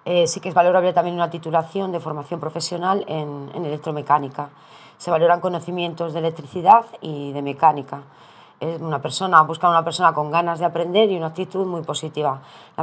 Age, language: 20-39, Spanish